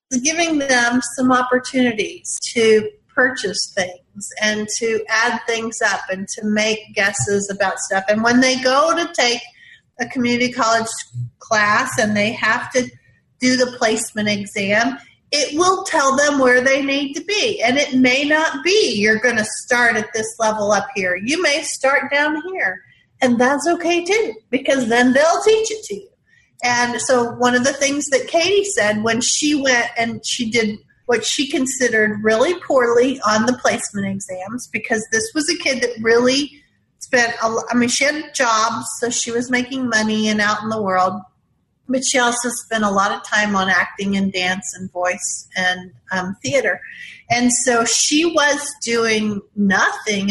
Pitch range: 215-275 Hz